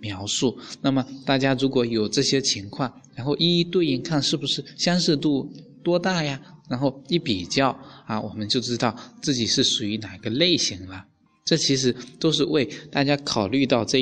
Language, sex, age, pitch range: Chinese, male, 20-39, 105-145 Hz